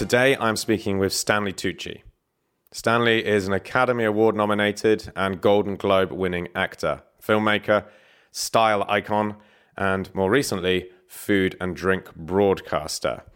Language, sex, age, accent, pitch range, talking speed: English, male, 30-49, British, 95-110 Hz, 120 wpm